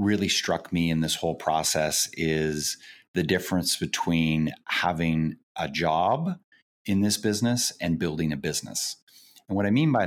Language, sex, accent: English, male, American